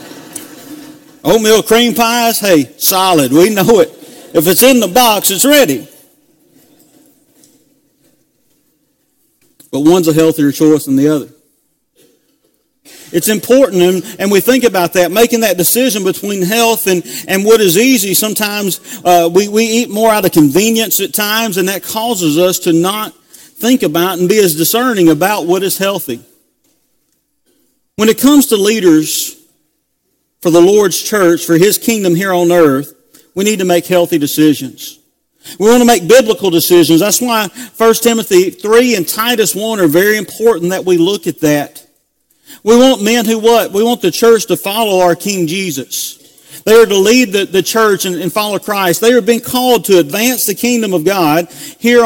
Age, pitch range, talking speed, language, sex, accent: 40-59, 180-240 Hz, 170 wpm, English, male, American